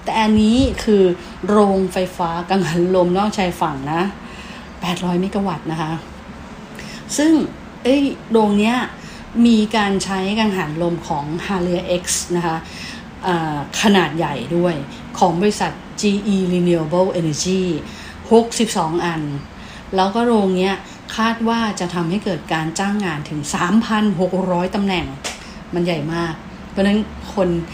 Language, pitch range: English, 170-210 Hz